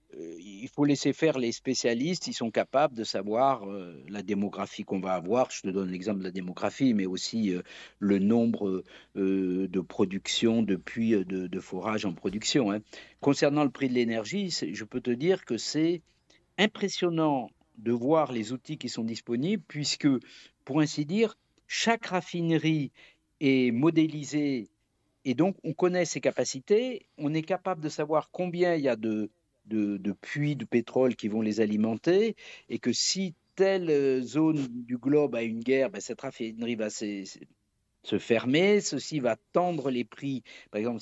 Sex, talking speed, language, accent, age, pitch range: male, 170 wpm, French, French, 50-69, 110-175 Hz